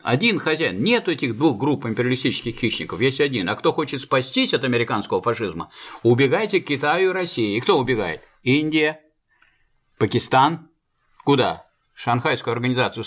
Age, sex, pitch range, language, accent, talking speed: 50-69, male, 120-170 Hz, Russian, native, 140 wpm